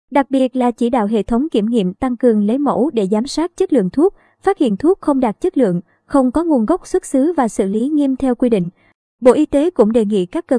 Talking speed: 265 wpm